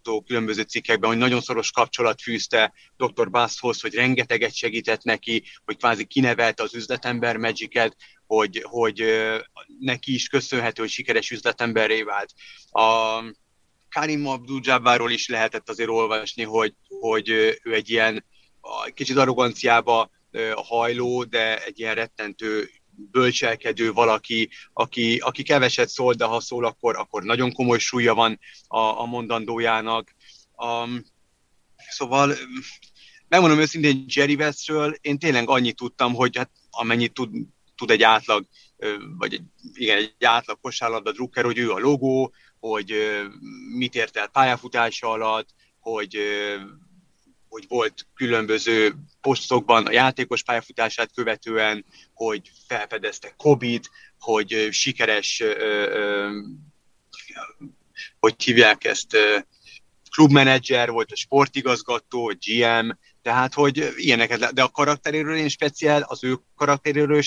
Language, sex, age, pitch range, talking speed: Hungarian, male, 30-49, 110-140 Hz, 120 wpm